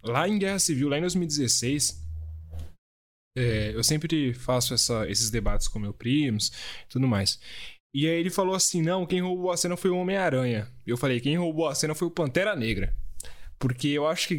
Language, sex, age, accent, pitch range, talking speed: Portuguese, male, 10-29, Brazilian, 110-155 Hz, 195 wpm